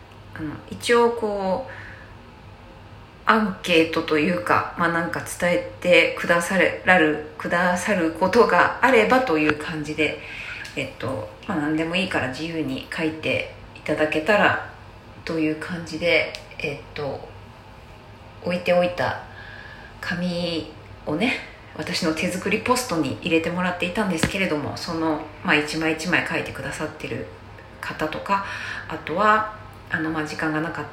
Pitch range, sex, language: 110-180 Hz, female, Japanese